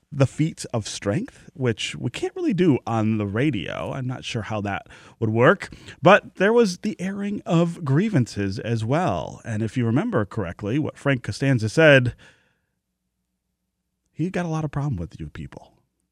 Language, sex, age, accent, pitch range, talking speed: English, male, 30-49, American, 105-140 Hz, 170 wpm